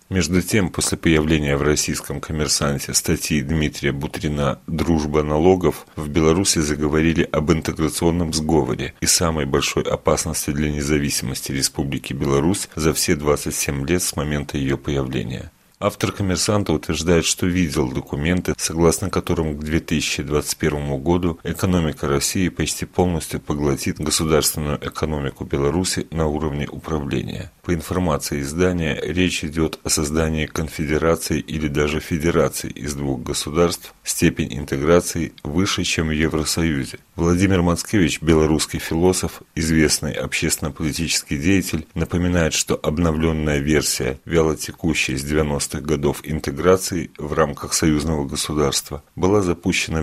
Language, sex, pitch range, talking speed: Russian, male, 75-85 Hz, 120 wpm